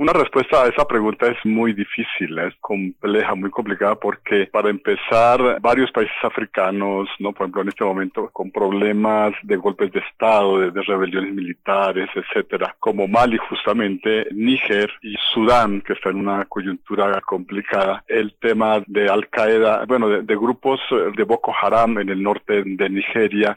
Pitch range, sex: 100-110 Hz, male